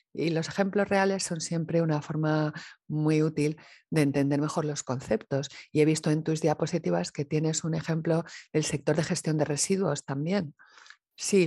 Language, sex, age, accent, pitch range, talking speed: English, female, 40-59, Spanish, 145-170 Hz, 175 wpm